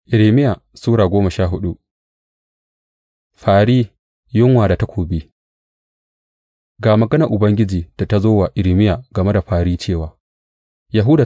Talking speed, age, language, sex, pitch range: 80 wpm, 30-49, English, male, 85-105 Hz